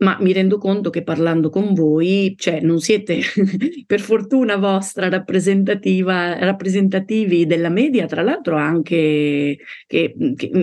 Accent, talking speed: native, 130 wpm